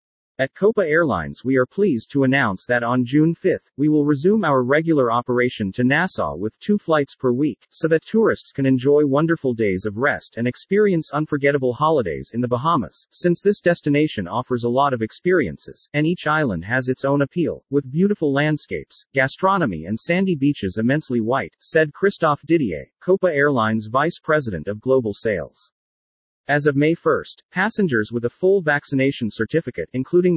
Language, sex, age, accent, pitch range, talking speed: English, male, 40-59, American, 125-160 Hz, 170 wpm